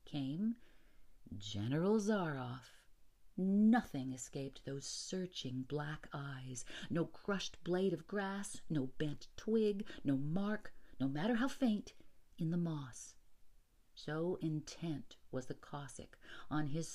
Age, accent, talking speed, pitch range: 50-69, American, 115 wpm, 155-245 Hz